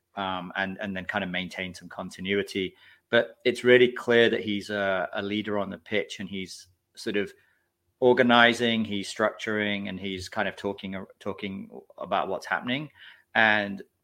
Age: 30-49